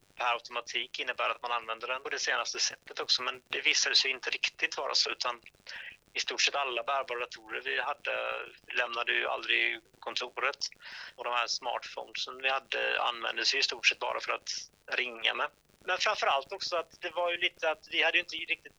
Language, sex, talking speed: Swedish, male, 200 wpm